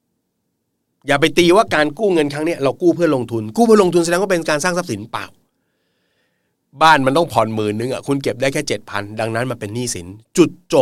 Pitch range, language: 105-145 Hz, Thai